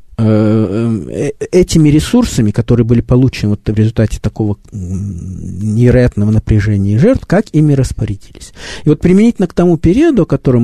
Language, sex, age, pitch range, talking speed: Russian, male, 50-69, 105-160 Hz, 130 wpm